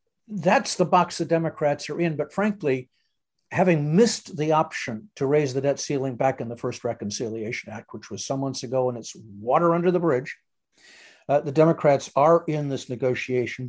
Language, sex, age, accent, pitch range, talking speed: English, male, 60-79, American, 125-155 Hz, 185 wpm